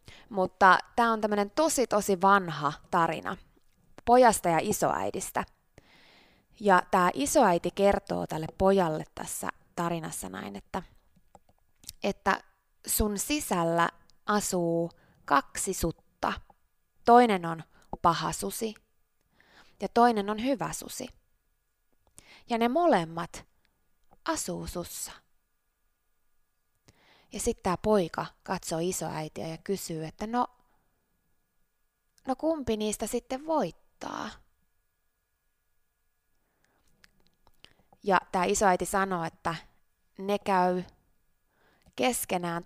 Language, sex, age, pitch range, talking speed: Finnish, female, 20-39, 165-215 Hz, 90 wpm